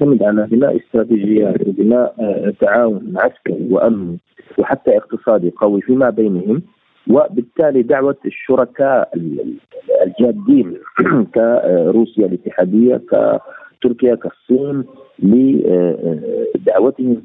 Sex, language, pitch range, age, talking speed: male, Arabic, 100-130 Hz, 40-59, 75 wpm